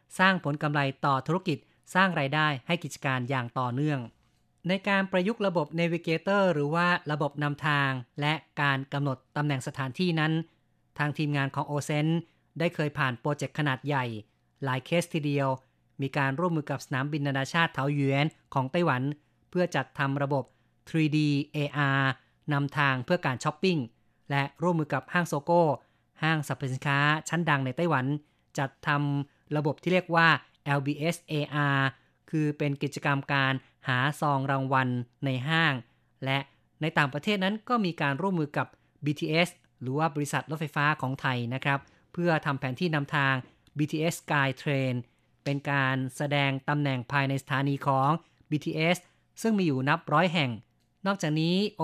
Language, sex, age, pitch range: Thai, female, 30-49, 135-160 Hz